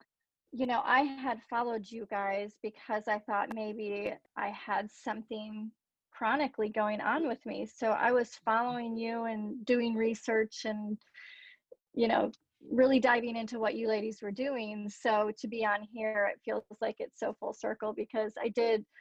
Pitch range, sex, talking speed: 215-245 Hz, female, 165 wpm